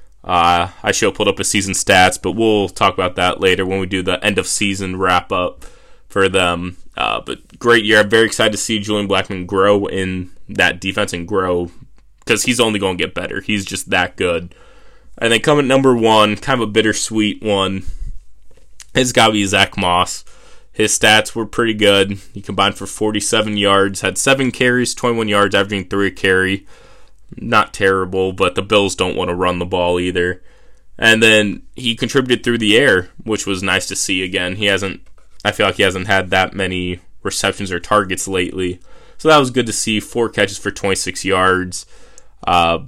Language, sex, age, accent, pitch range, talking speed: English, male, 20-39, American, 95-110 Hz, 190 wpm